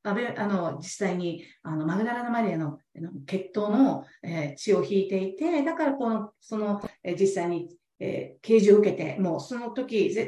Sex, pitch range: female, 175-245 Hz